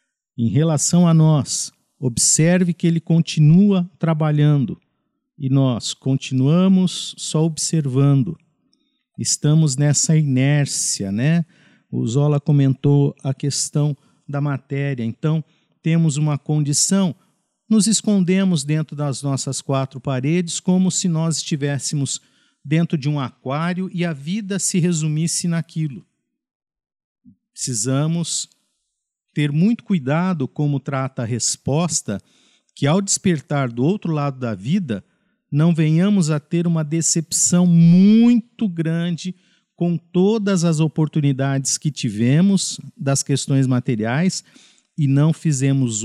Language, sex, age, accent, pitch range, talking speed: Portuguese, male, 50-69, Brazilian, 140-175 Hz, 110 wpm